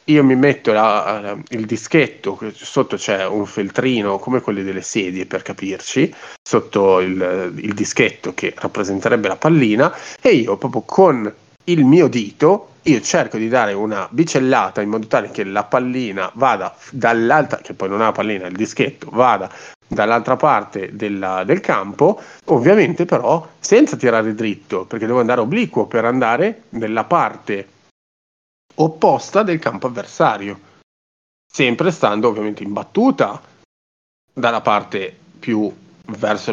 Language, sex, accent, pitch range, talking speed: Italian, male, native, 95-125 Hz, 140 wpm